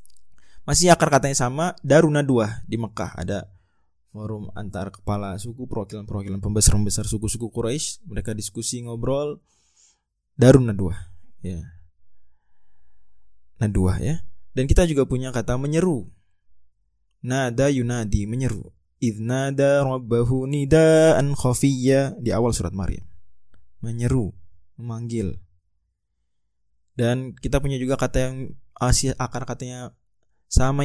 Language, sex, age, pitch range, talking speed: Indonesian, male, 20-39, 95-130 Hz, 105 wpm